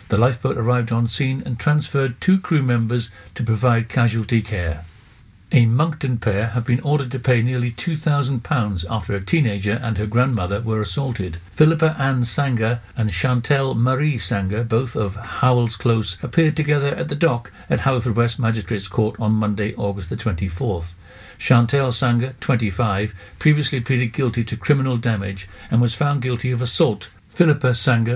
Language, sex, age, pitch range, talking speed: English, male, 60-79, 110-130 Hz, 160 wpm